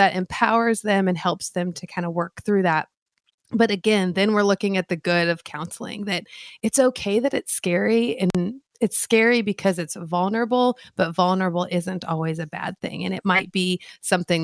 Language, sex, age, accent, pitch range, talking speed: English, female, 30-49, American, 180-220 Hz, 190 wpm